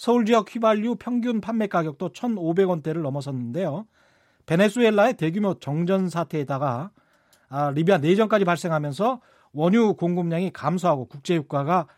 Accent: native